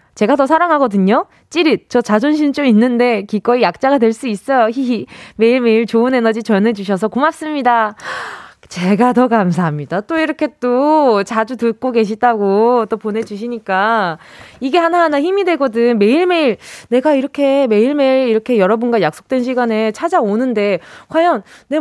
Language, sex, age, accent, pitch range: Korean, female, 20-39, native, 225-330 Hz